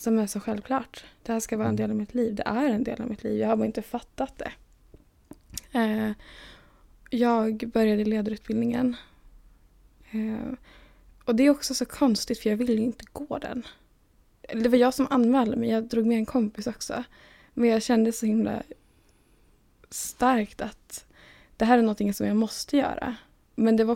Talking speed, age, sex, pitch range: 185 wpm, 10-29, female, 220-245 Hz